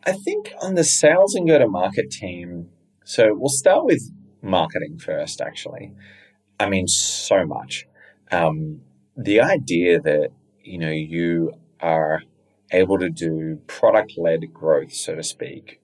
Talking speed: 135 wpm